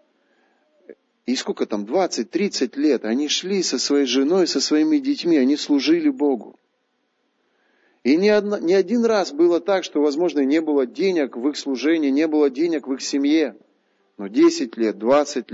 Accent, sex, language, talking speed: native, male, Russian, 160 wpm